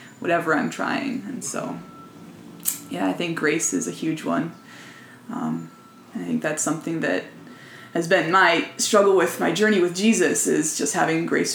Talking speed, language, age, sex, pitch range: 165 wpm, English, 20-39, female, 170-260 Hz